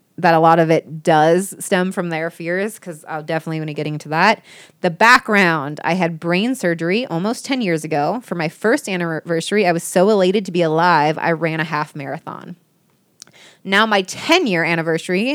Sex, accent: female, American